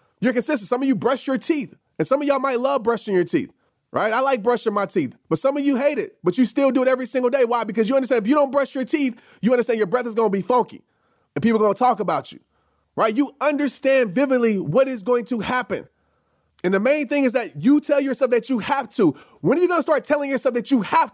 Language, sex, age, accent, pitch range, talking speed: English, male, 30-49, American, 225-280 Hz, 275 wpm